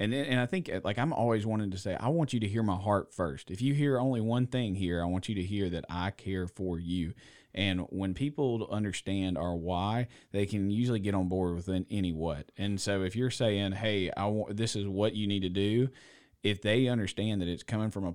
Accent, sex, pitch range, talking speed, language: American, male, 95-120 Hz, 245 wpm, English